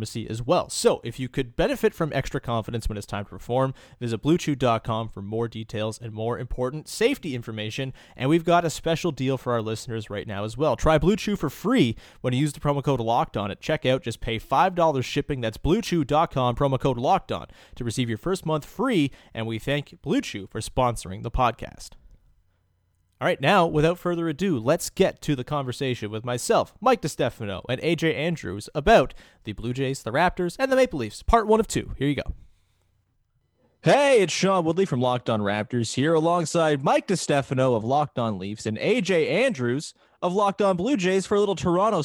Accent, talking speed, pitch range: American, 200 wpm, 115-160 Hz